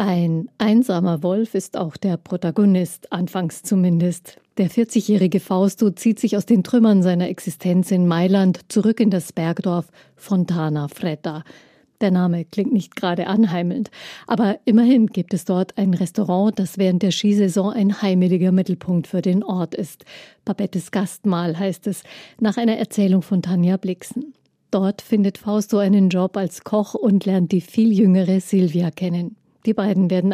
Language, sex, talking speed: German, female, 155 wpm